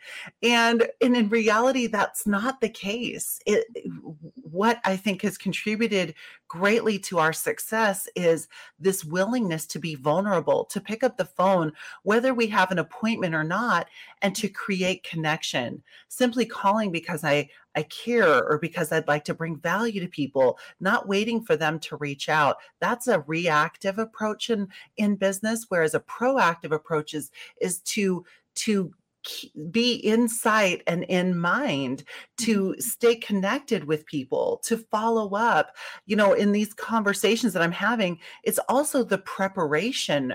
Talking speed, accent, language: 155 wpm, American, English